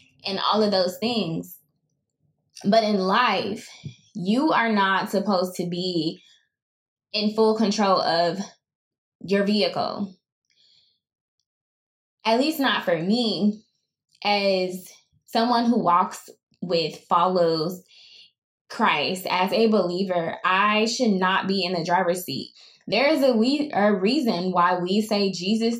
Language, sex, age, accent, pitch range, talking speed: English, female, 20-39, American, 190-230 Hz, 120 wpm